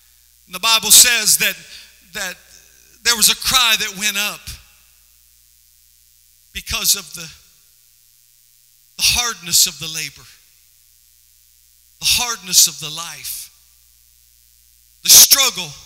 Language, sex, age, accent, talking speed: English, male, 50-69, American, 100 wpm